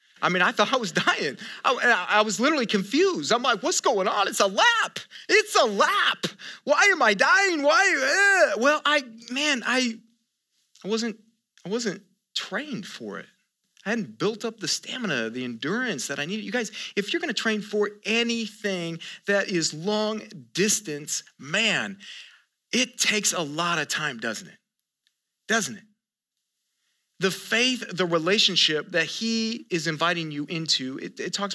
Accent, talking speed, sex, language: American, 170 wpm, male, English